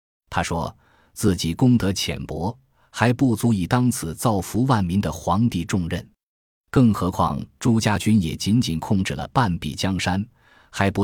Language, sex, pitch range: Chinese, male, 85-115 Hz